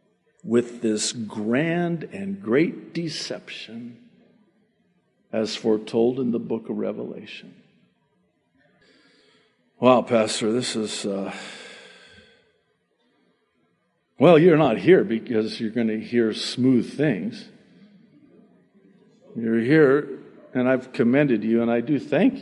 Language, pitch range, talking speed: English, 120-200 Hz, 105 wpm